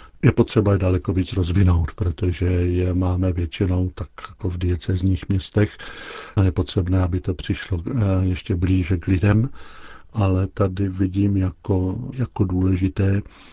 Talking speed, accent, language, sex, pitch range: 135 wpm, native, Czech, male, 90-100 Hz